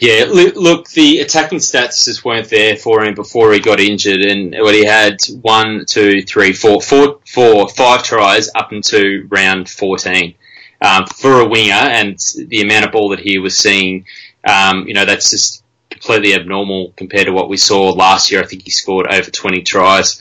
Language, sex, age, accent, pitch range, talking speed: English, male, 20-39, Australian, 95-110 Hz, 190 wpm